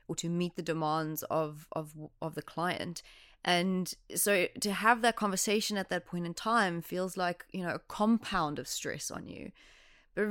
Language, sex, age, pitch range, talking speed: English, female, 20-39, 165-205 Hz, 185 wpm